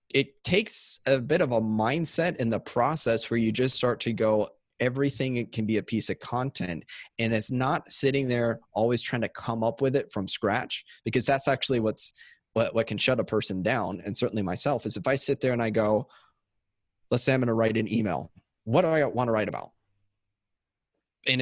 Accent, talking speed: American, 215 wpm